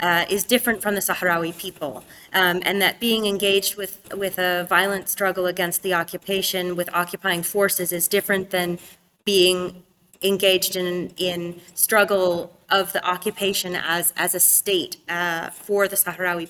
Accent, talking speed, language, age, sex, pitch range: American, 155 wpm, English, 20-39, female, 180-200 Hz